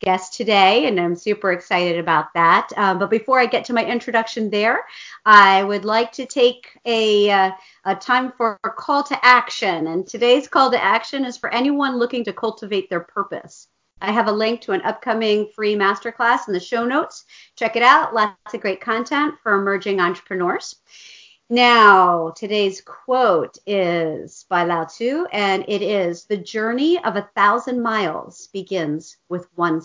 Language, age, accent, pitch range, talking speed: English, 50-69, American, 185-235 Hz, 175 wpm